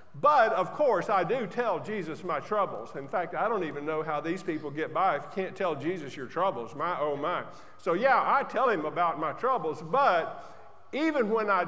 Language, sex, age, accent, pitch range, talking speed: English, male, 50-69, American, 175-240 Hz, 215 wpm